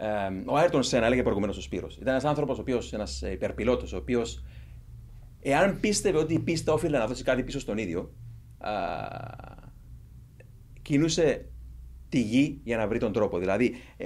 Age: 30-49